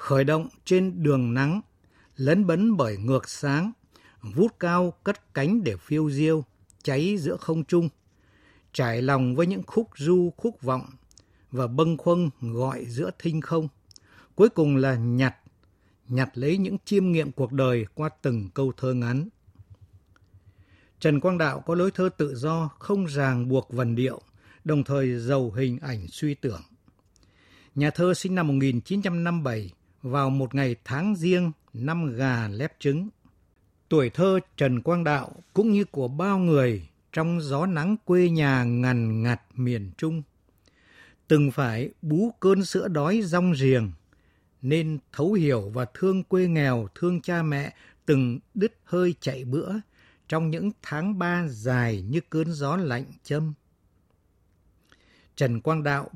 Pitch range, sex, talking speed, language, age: 120-170 Hz, male, 150 wpm, Vietnamese, 60-79